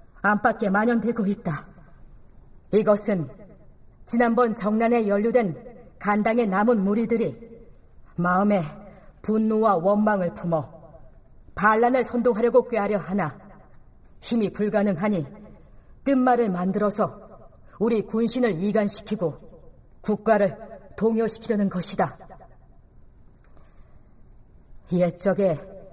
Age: 40-59